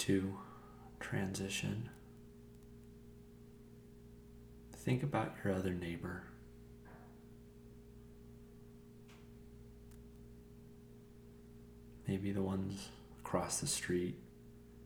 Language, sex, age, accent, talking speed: English, male, 30-49, American, 55 wpm